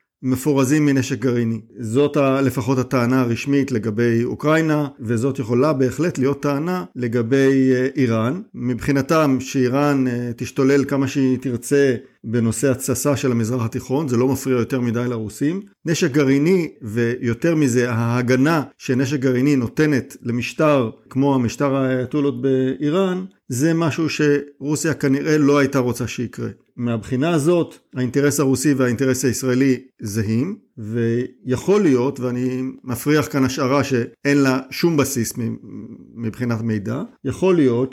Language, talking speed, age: Hebrew, 120 wpm, 50-69